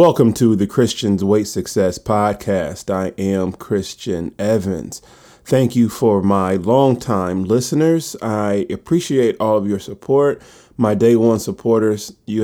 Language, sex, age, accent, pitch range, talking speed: English, male, 30-49, American, 95-120 Hz, 135 wpm